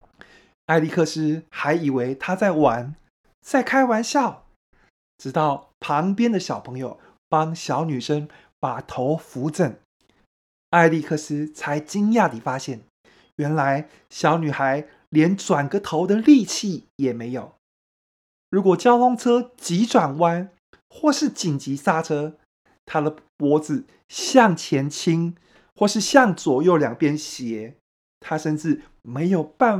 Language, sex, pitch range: Chinese, male, 140-185 Hz